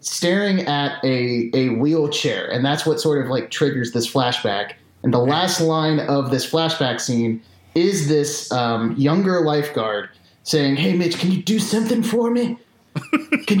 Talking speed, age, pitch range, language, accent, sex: 165 wpm, 30-49, 110-150 Hz, English, American, male